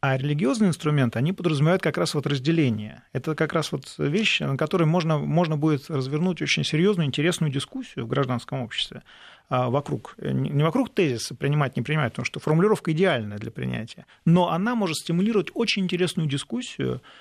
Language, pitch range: Russian, 135-180 Hz